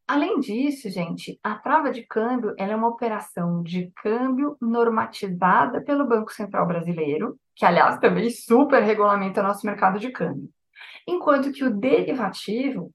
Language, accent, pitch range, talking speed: Portuguese, Brazilian, 205-275 Hz, 150 wpm